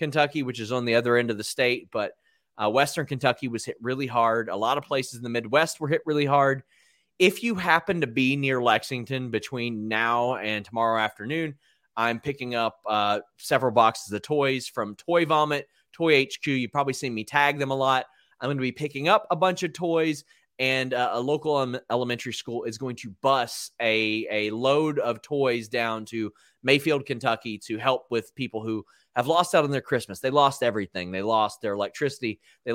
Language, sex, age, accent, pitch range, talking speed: English, male, 30-49, American, 115-145 Hz, 200 wpm